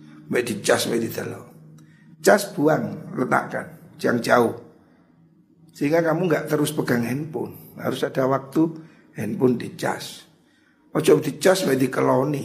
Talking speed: 100 wpm